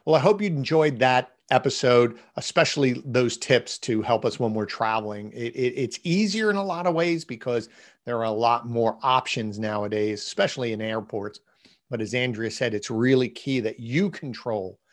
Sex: male